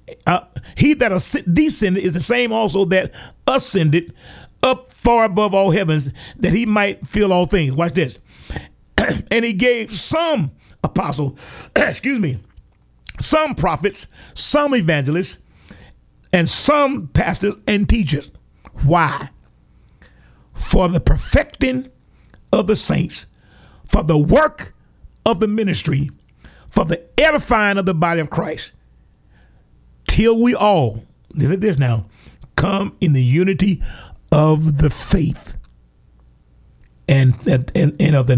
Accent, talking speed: American, 125 wpm